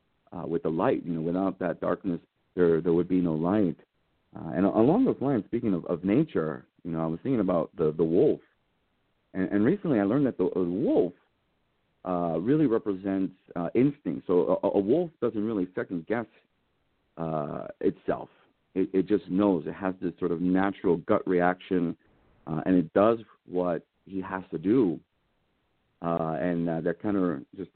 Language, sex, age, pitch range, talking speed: English, male, 50-69, 85-95 Hz, 185 wpm